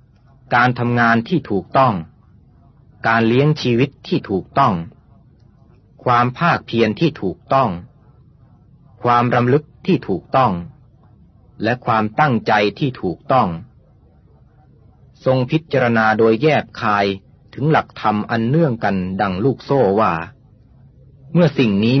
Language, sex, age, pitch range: Thai, male, 30-49, 105-130 Hz